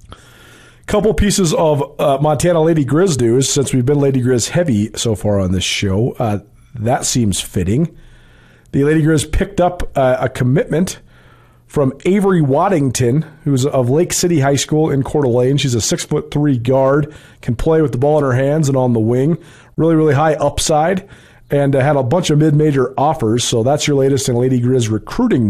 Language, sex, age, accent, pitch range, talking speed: English, male, 40-59, American, 130-180 Hz, 195 wpm